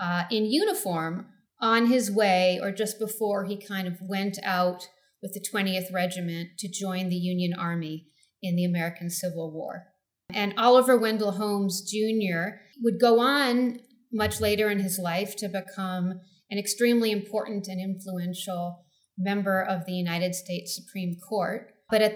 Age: 40-59